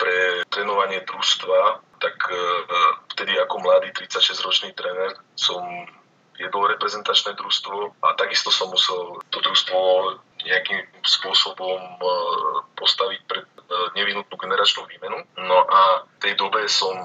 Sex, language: male, Slovak